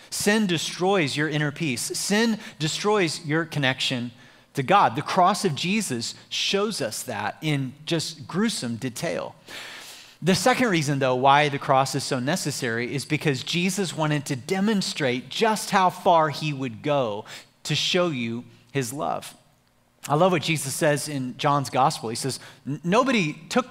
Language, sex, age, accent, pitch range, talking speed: English, male, 30-49, American, 135-180 Hz, 155 wpm